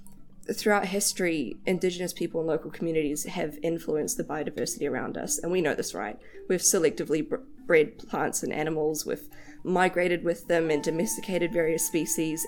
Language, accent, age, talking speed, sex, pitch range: English, Australian, 20-39, 155 wpm, female, 165-200 Hz